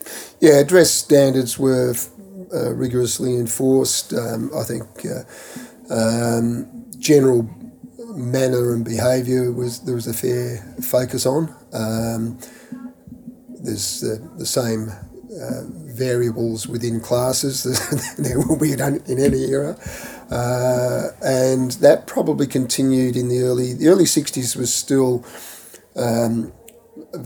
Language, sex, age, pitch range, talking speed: English, male, 40-59, 115-130 Hz, 125 wpm